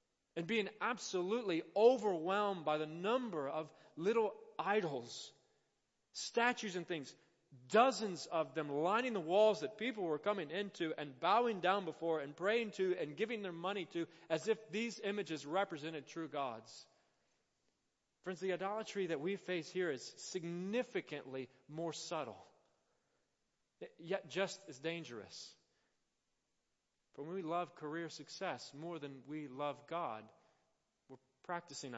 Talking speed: 135 wpm